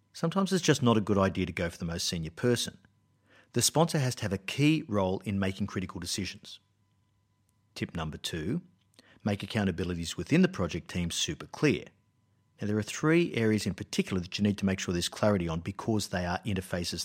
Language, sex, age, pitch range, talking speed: English, male, 50-69, 95-125 Hz, 200 wpm